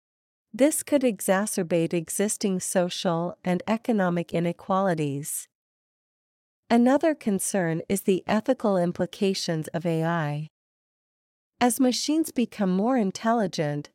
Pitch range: 170-225 Hz